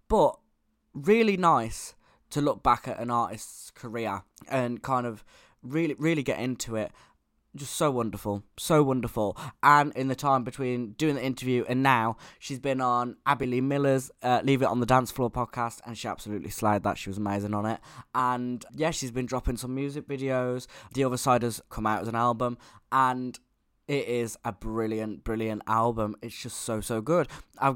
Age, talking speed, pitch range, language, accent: 20-39, 190 wpm, 115-135 Hz, English, British